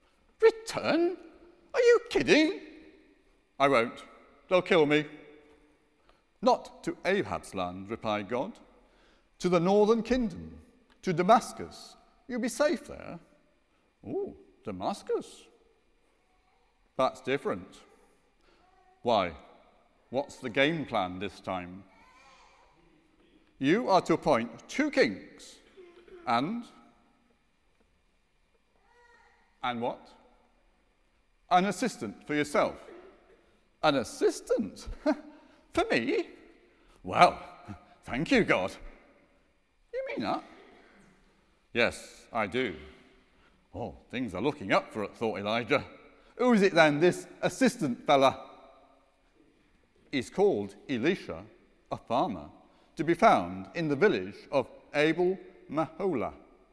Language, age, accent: English, 50-69, British